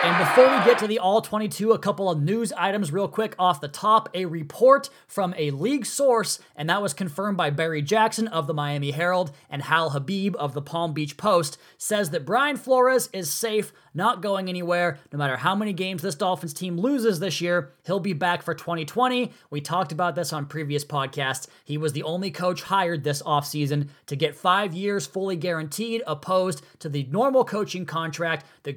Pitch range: 155-200 Hz